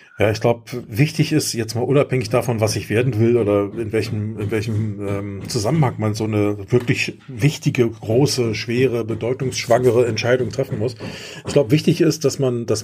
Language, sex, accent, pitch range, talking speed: German, male, German, 110-135 Hz, 180 wpm